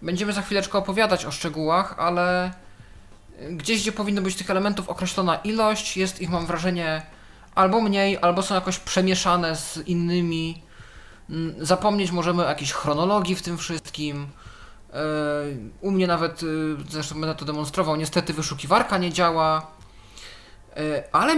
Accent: native